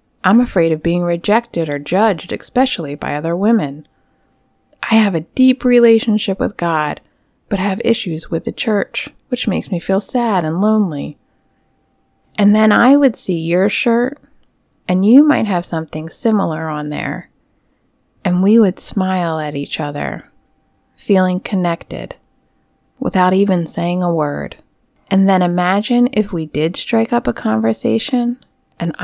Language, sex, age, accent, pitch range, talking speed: English, female, 30-49, American, 170-220 Hz, 145 wpm